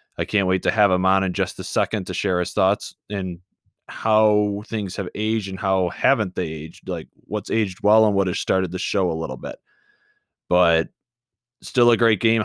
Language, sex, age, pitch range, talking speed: English, male, 20-39, 95-110 Hz, 205 wpm